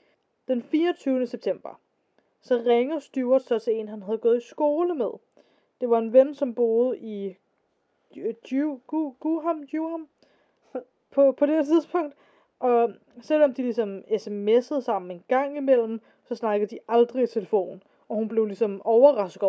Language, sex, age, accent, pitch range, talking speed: Danish, female, 20-39, native, 205-270 Hz, 150 wpm